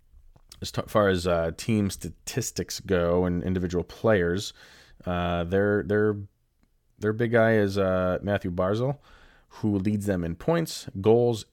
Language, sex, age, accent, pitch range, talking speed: English, male, 30-49, American, 90-105 Hz, 135 wpm